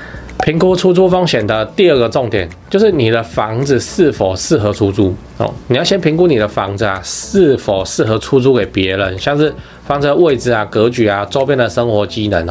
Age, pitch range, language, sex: 20-39, 100-135 Hz, Chinese, male